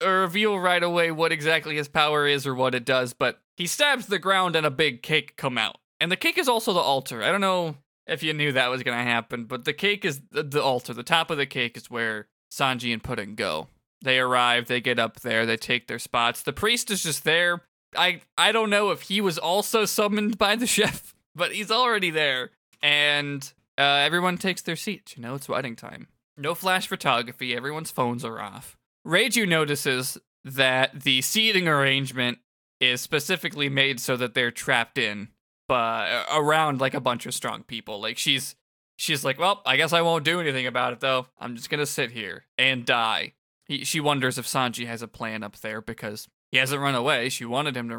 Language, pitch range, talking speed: English, 125-165 Hz, 215 wpm